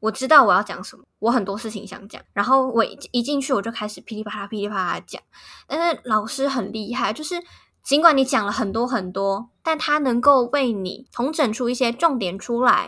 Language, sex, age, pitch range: Chinese, female, 10-29, 205-260 Hz